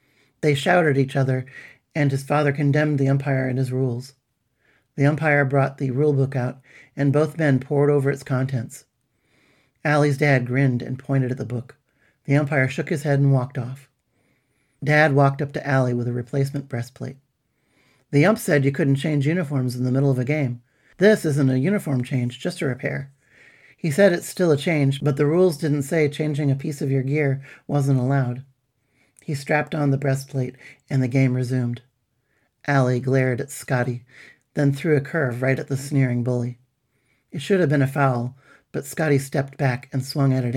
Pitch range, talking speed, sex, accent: 130-145 Hz, 190 wpm, male, American